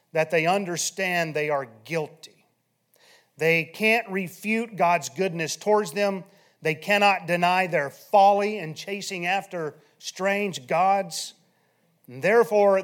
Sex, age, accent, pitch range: male, 30-49, American, 150-195 Hz